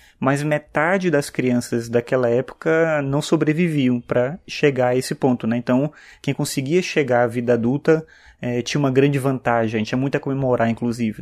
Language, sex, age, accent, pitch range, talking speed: Portuguese, male, 20-39, Brazilian, 120-150 Hz, 170 wpm